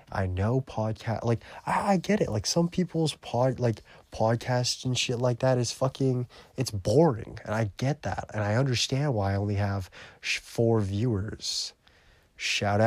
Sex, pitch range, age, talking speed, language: male, 100-120 Hz, 20-39, 175 wpm, English